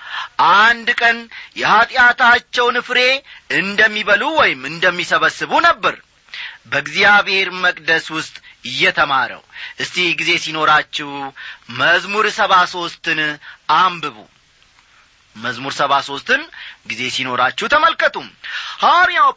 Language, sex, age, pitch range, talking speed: Amharic, male, 30-49, 180-285 Hz, 75 wpm